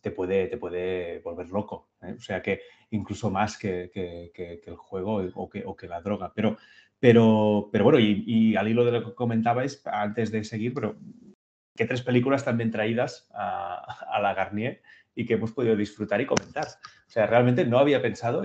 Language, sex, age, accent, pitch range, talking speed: Spanish, male, 30-49, Spanish, 100-125 Hz, 190 wpm